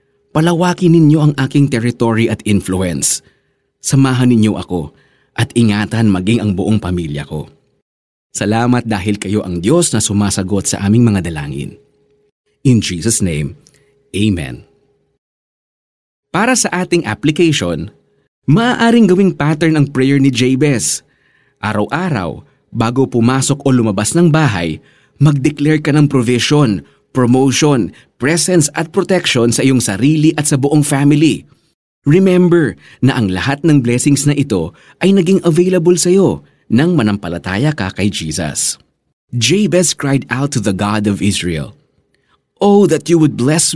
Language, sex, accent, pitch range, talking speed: Filipino, male, native, 105-155 Hz, 130 wpm